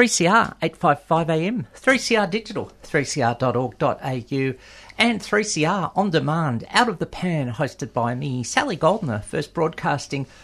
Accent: Australian